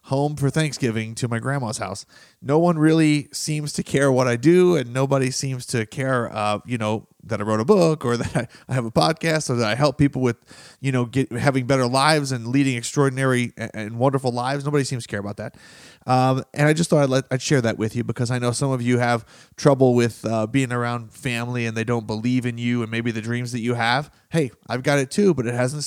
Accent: American